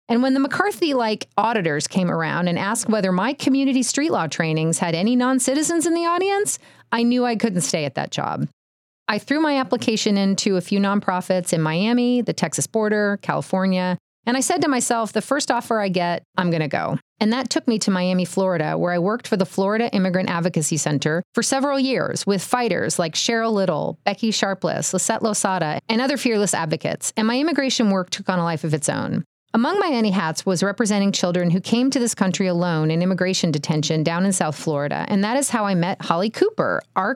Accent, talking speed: American, 210 wpm